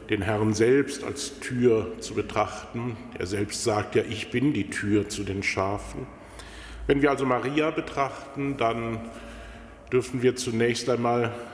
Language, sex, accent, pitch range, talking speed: German, male, German, 105-120 Hz, 145 wpm